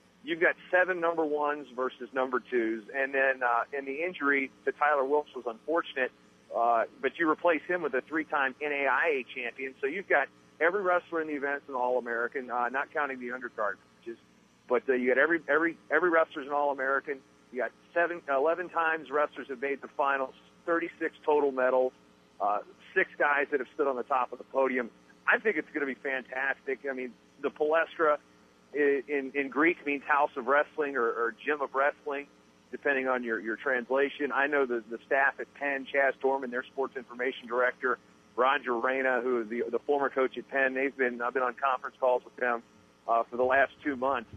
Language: English